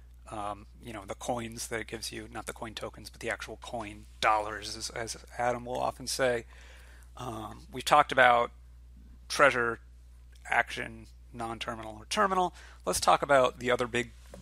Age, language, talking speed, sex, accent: 30-49, English, 160 wpm, male, American